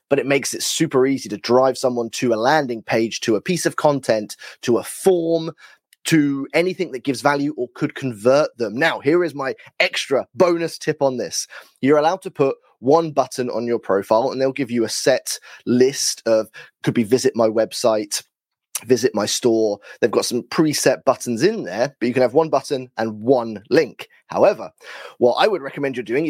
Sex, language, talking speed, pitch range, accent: male, English, 200 wpm, 120-160 Hz, British